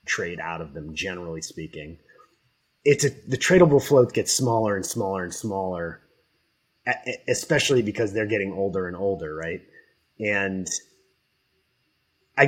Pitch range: 95-145 Hz